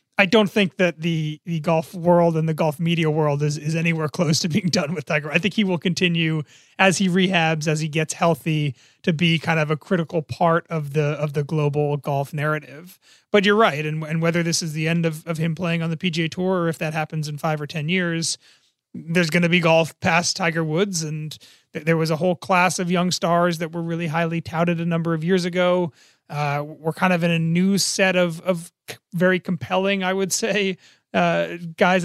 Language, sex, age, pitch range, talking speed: English, male, 30-49, 160-185 Hz, 225 wpm